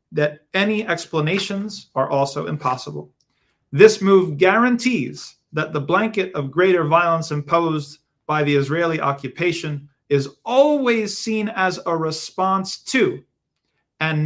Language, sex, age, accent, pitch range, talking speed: English, male, 30-49, American, 135-170 Hz, 120 wpm